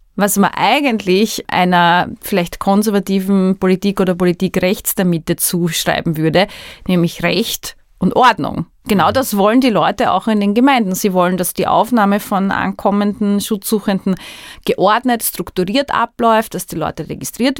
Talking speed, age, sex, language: 145 wpm, 30-49, female, German